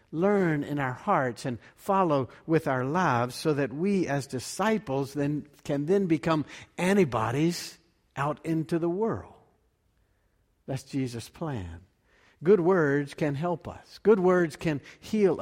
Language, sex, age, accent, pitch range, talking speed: English, male, 60-79, American, 130-185 Hz, 135 wpm